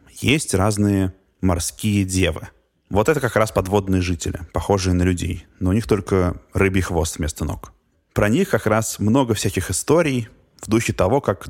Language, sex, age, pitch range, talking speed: Russian, male, 20-39, 90-105 Hz, 165 wpm